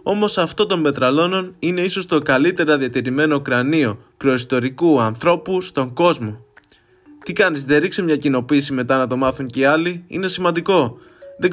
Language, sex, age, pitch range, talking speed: Greek, male, 20-39, 130-160 Hz, 155 wpm